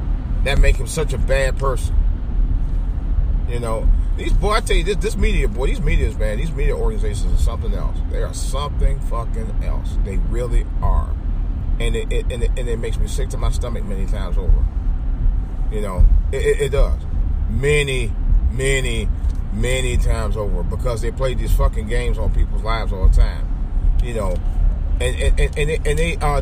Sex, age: male, 40-59